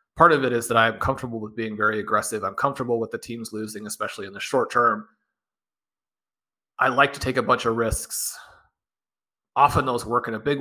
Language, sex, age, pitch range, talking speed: English, male, 30-49, 115-135 Hz, 205 wpm